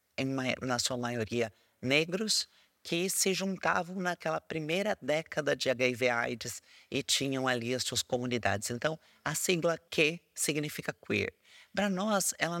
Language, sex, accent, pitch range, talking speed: Portuguese, male, Brazilian, 120-165 Hz, 140 wpm